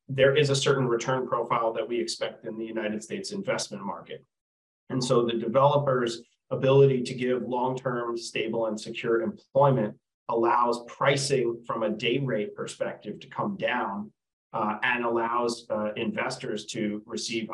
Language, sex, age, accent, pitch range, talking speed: English, male, 30-49, American, 115-135 Hz, 150 wpm